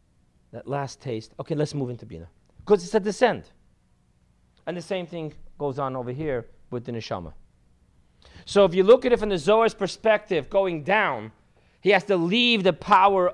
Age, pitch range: 40-59, 135-200 Hz